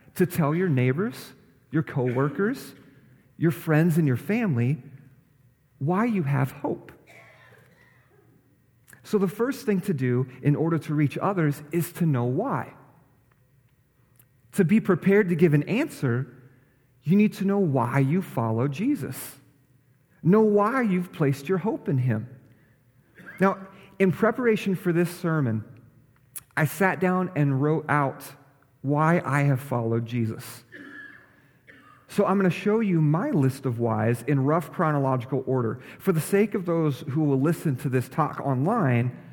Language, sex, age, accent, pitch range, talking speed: English, male, 40-59, American, 130-170 Hz, 145 wpm